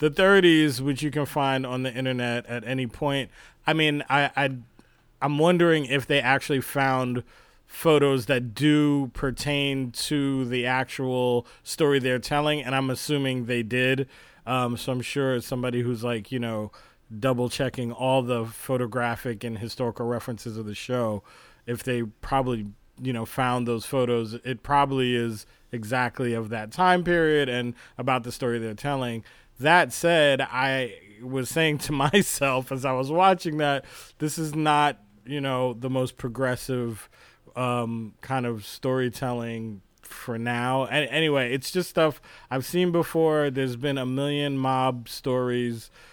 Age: 30-49